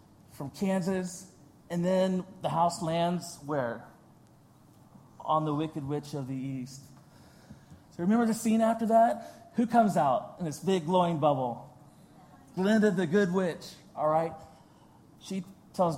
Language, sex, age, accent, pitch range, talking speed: English, male, 30-49, American, 160-215 Hz, 140 wpm